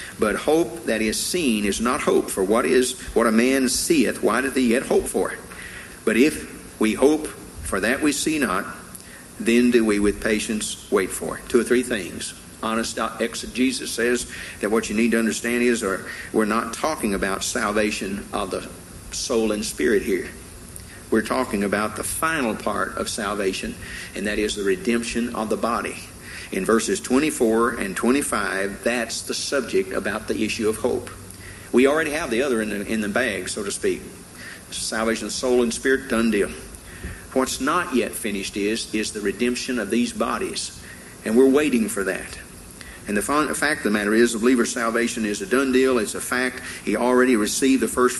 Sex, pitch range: male, 105-125 Hz